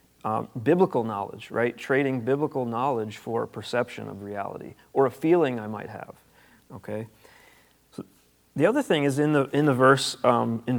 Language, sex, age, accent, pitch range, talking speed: English, male, 40-59, American, 110-145 Hz, 170 wpm